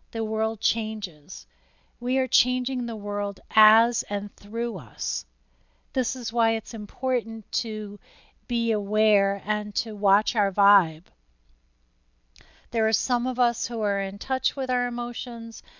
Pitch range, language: 200-235 Hz, English